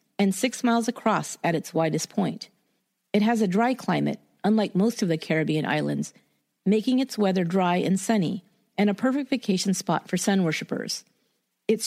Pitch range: 180-230 Hz